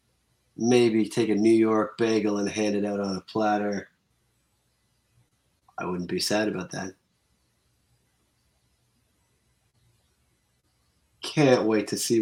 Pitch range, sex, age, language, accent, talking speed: 105-125 Hz, male, 30-49, English, American, 115 wpm